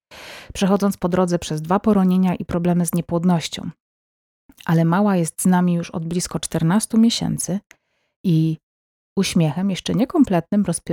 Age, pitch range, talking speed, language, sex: 30-49, 170-210 Hz, 130 wpm, Polish, female